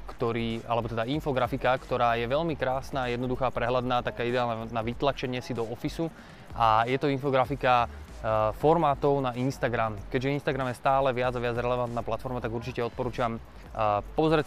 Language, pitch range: Slovak, 115-130 Hz